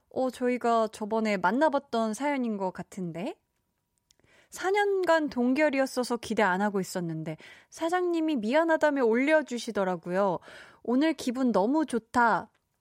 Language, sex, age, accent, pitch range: Korean, female, 20-39, native, 210-305 Hz